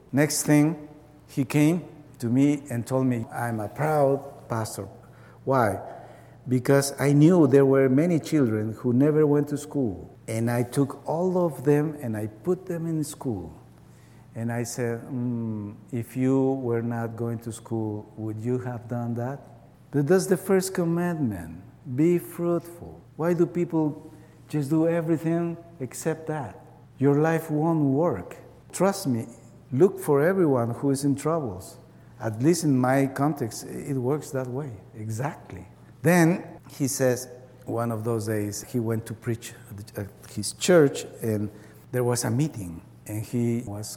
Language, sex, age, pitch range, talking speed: English, male, 60-79, 115-145 Hz, 155 wpm